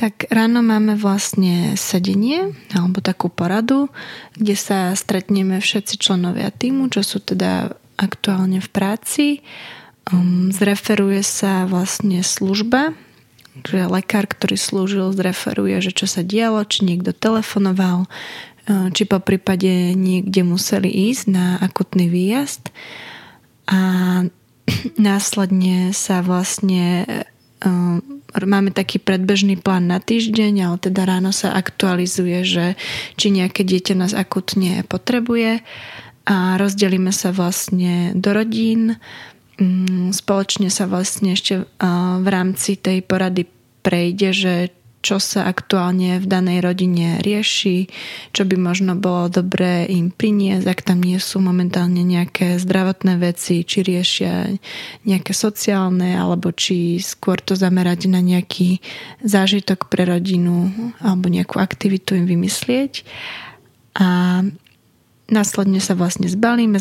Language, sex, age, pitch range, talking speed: Slovak, female, 20-39, 180-200 Hz, 115 wpm